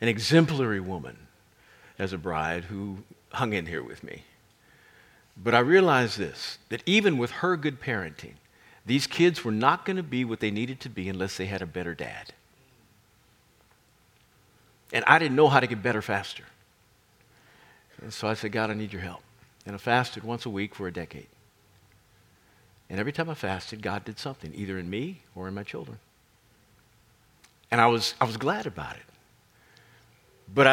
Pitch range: 100-145 Hz